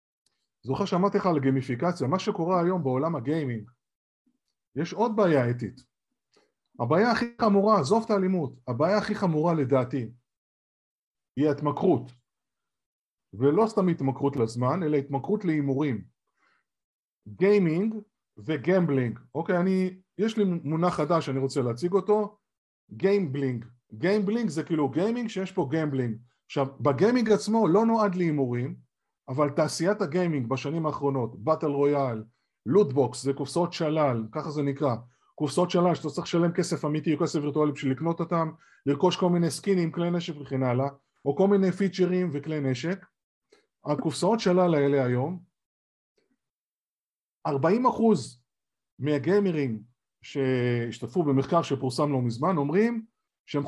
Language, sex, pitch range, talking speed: Hebrew, male, 135-185 Hz, 125 wpm